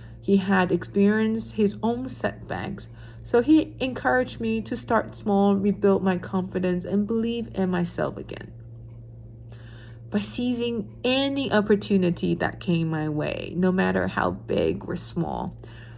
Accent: American